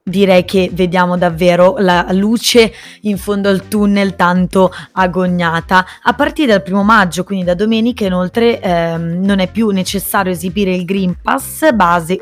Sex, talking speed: female, 150 wpm